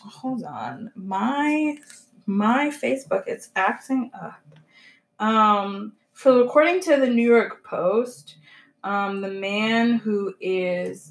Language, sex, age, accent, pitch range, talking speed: English, female, 20-39, American, 195-255 Hz, 115 wpm